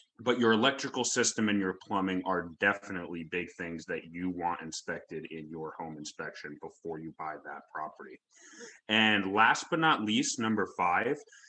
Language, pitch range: English, 90-120 Hz